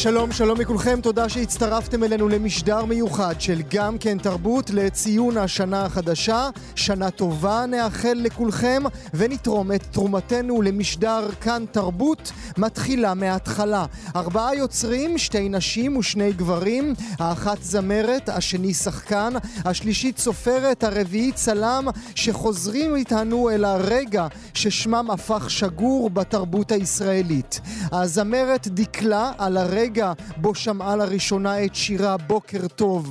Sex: male